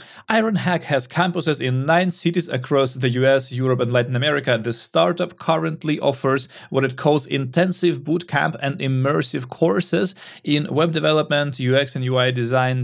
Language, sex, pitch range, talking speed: English, male, 125-170 Hz, 155 wpm